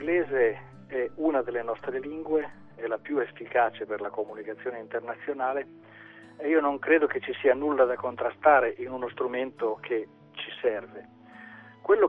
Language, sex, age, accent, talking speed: Italian, male, 40-59, native, 155 wpm